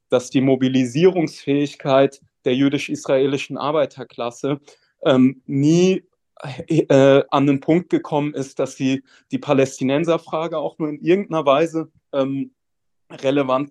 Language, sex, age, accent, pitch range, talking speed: German, male, 30-49, German, 130-150 Hz, 110 wpm